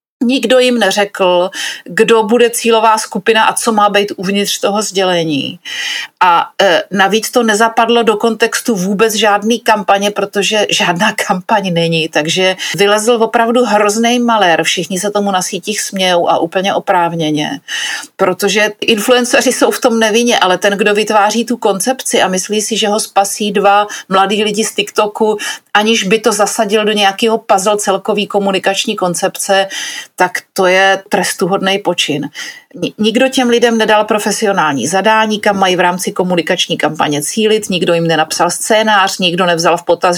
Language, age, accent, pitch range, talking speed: Czech, 40-59, native, 185-225 Hz, 150 wpm